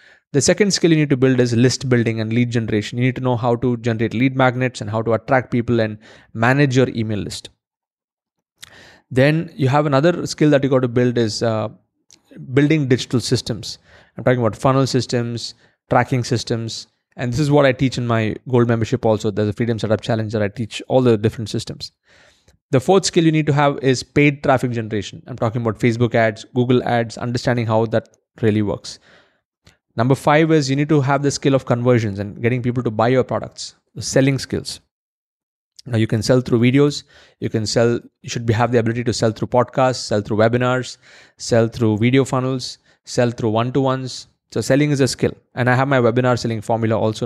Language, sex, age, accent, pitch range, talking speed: English, male, 20-39, Indian, 115-135 Hz, 205 wpm